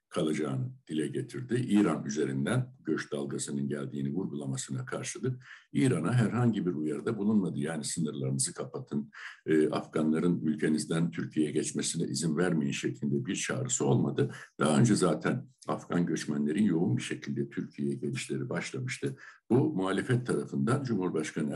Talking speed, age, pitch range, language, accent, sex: 120 wpm, 60-79, 70-90 Hz, Turkish, native, male